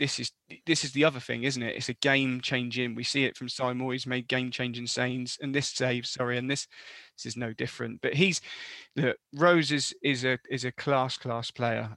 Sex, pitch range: male, 120-140 Hz